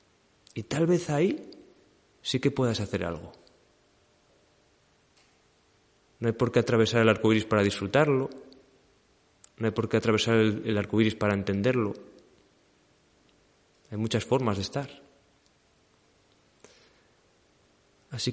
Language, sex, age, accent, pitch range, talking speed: Spanish, male, 30-49, Spanish, 110-145 Hz, 110 wpm